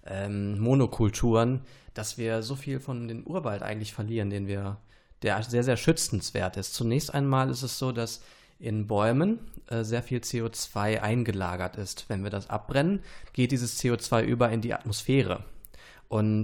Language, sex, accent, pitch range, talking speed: German, male, German, 105-135 Hz, 155 wpm